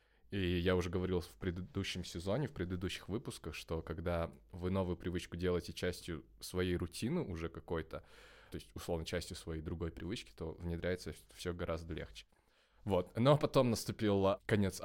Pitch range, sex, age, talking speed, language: 90-110 Hz, male, 20-39, 155 wpm, Russian